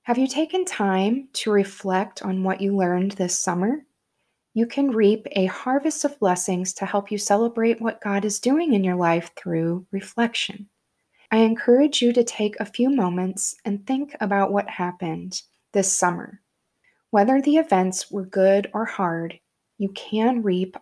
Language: English